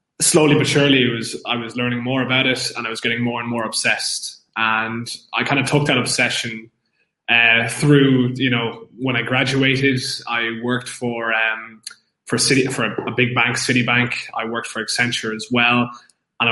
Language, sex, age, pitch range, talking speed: English, male, 20-39, 115-135 Hz, 170 wpm